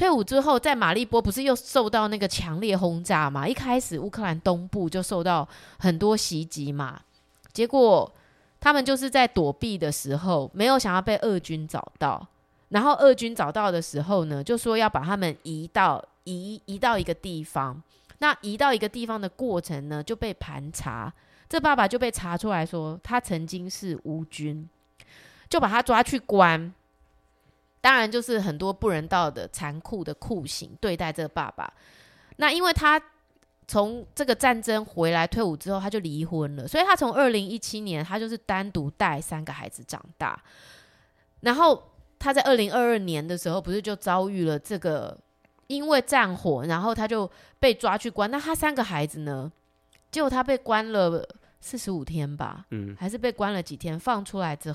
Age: 20-39